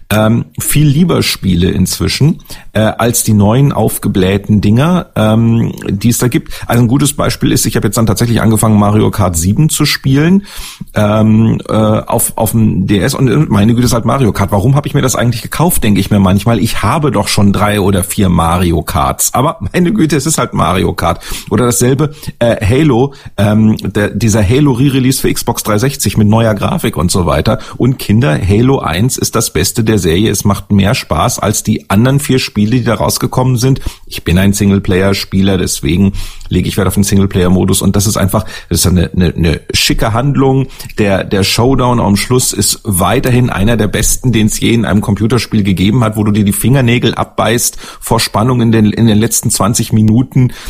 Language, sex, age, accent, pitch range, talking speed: German, male, 40-59, German, 100-125 Hz, 200 wpm